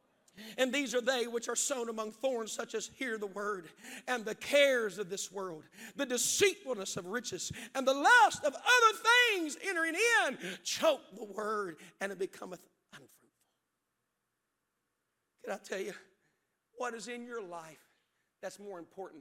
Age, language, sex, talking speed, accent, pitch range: 50-69, English, male, 160 wpm, American, 190-240 Hz